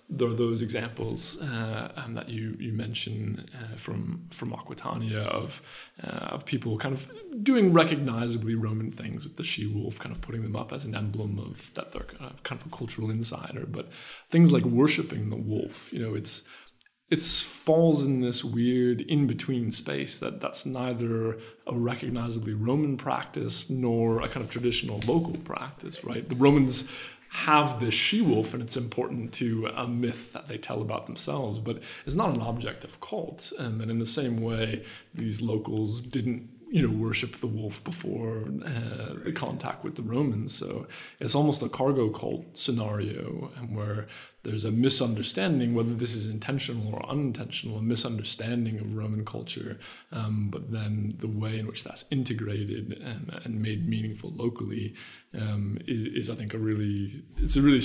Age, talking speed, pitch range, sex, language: 20-39, 170 wpm, 110-130 Hz, male, English